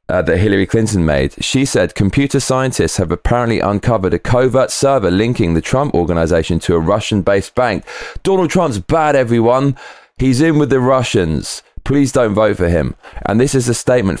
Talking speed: 175 wpm